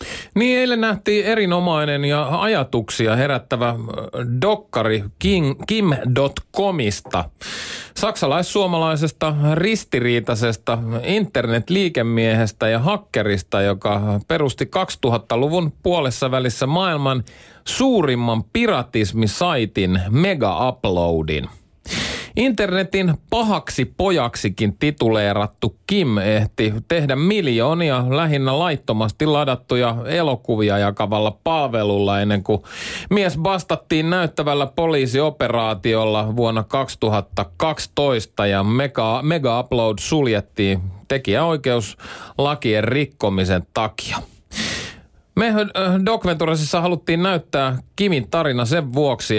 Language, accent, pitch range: Finnish, native, 110-170 Hz